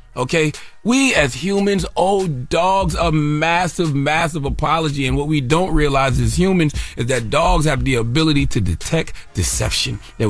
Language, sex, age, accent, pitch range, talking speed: English, male, 30-49, American, 125-170 Hz, 155 wpm